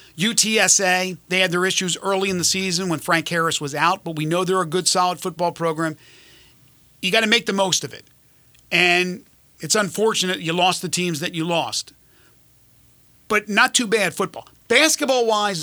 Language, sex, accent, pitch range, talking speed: English, male, American, 160-195 Hz, 180 wpm